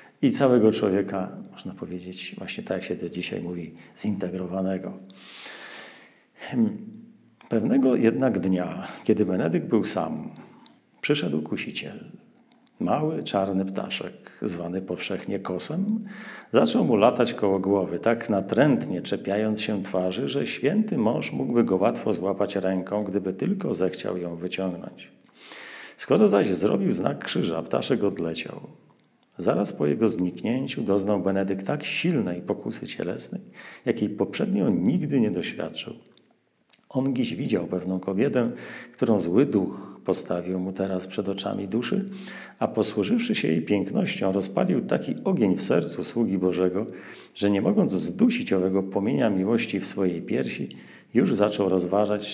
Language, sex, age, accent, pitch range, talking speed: Polish, male, 40-59, native, 95-115 Hz, 130 wpm